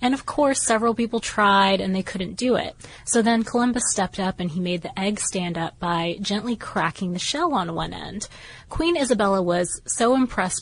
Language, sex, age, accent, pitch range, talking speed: English, female, 20-39, American, 185-240 Hz, 205 wpm